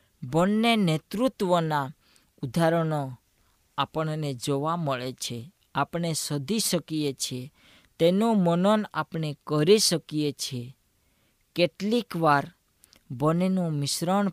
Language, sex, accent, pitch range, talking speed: Gujarati, female, native, 135-175 Hz, 40 wpm